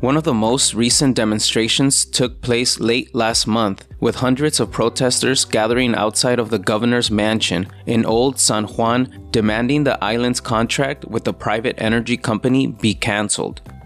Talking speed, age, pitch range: 155 wpm, 20-39, 105-125 Hz